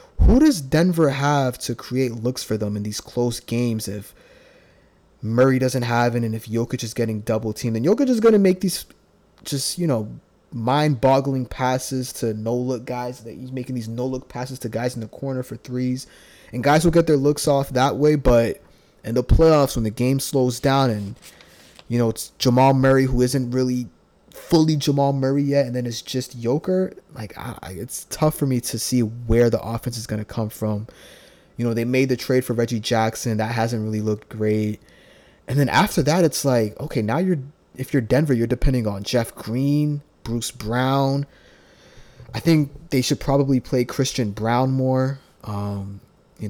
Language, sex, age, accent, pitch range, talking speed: English, male, 20-39, American, 115-140 Hz, 190 wpm